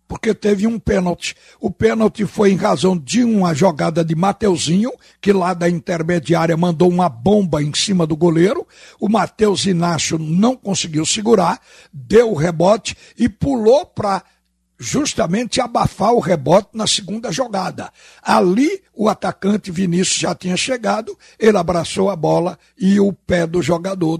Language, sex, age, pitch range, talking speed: Portuguese, male, 60-79, 170-210 Hz, 150 wpm